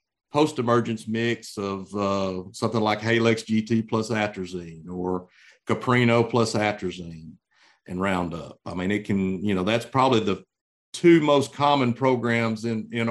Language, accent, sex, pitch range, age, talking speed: English, American, male, 100-120 Hz, 50-69, 140 wpm